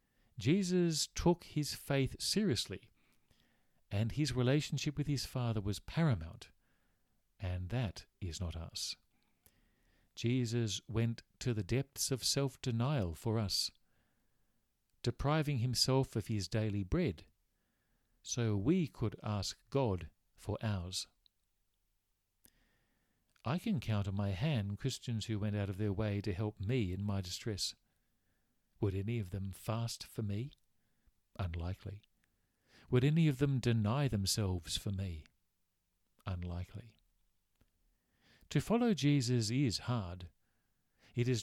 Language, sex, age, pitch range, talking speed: English, male, 50-69, 95-130 Hz, 120 wpm